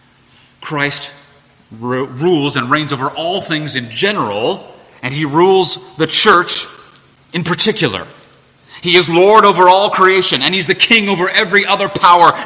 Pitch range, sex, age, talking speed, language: 125-170 Hz, male, 30-49, 145 wpm, English